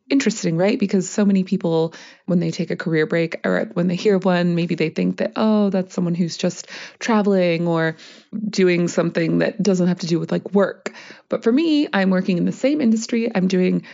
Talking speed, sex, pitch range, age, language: 210 wpm, female, 180-220 Hz, 20-39, English